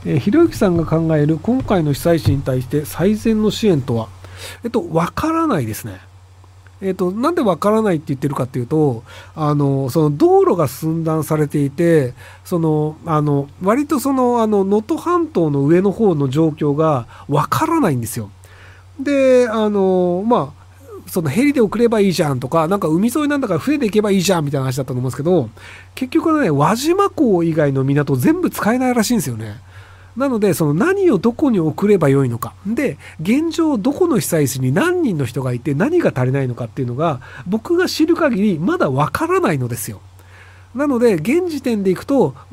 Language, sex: Japanese, male